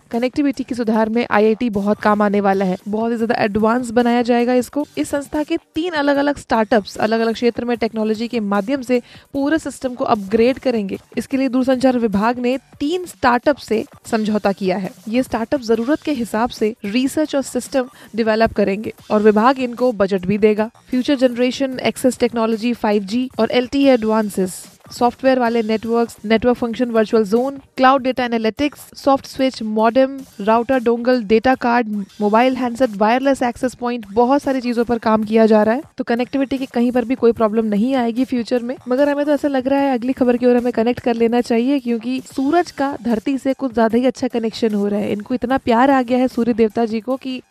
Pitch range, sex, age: 225-265 Hz, female, 20-39